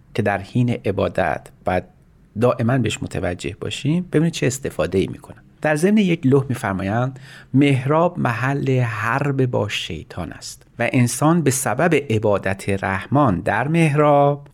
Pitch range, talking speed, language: 100-140 Hz, 130 wpm, Persian